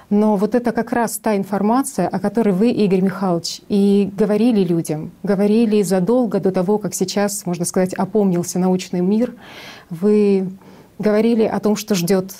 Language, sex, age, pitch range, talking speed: Russian, female, 30-49, 185-210 Hz, 155 wpm